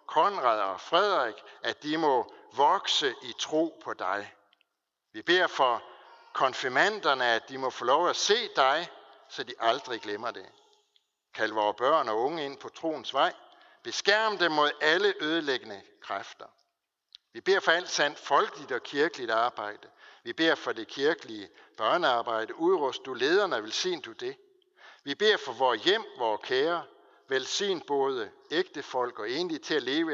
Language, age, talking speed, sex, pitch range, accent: Danish, 60-79, 160 wpm, male, 355-420 Hz, native